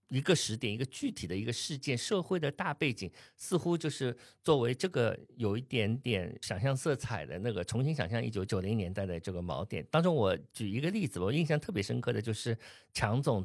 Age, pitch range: 50-69, 110-145 Hz